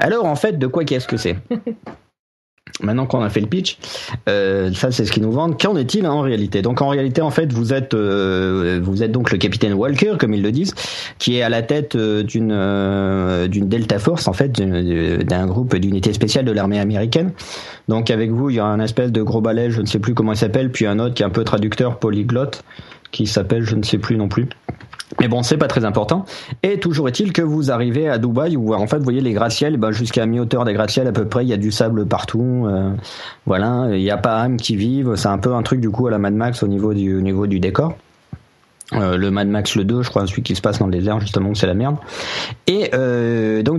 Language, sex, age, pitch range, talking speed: French, male, 40-59, 105-135 Hz, 250 wpm